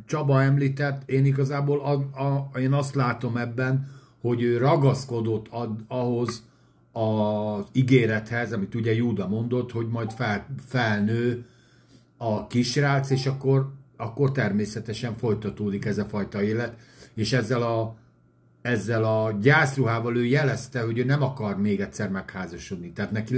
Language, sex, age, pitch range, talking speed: Hungarian, male, 60-79, 110-130 Hz, 125 wpm